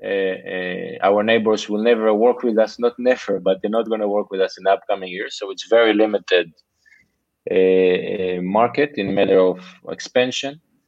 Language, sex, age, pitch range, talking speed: Dutch, male, 20-39, 95-115 Hz, 180 wpm